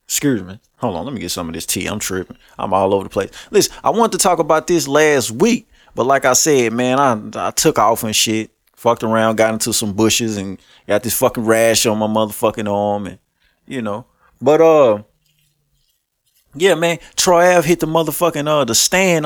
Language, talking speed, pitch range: English, 210 wpm, 120-175 Hz